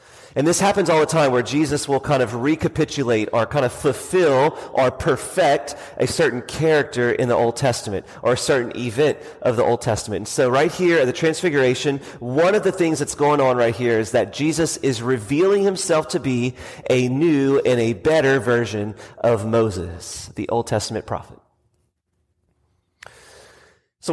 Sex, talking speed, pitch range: male, 175 wpm, 120-175 Hz